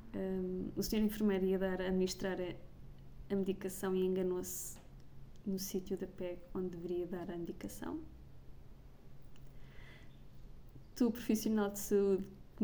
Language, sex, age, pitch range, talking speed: Portuguese, female, 20-39, 185-220 Hz, 125 wpm